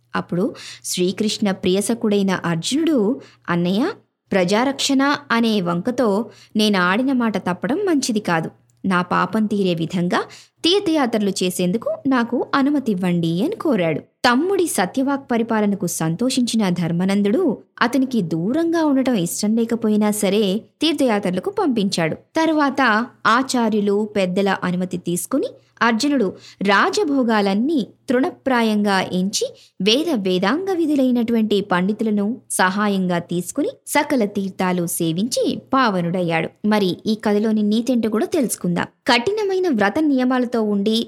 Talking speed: 90 wpm